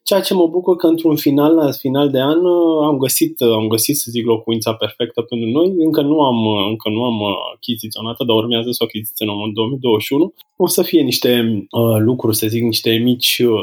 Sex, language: male, Romanian